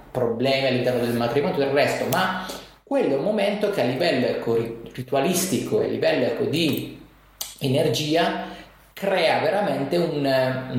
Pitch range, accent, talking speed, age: 120-185 Hz, native, 140 wpm, 30-49